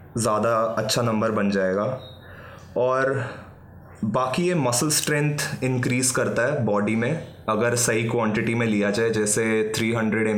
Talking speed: 140 wpm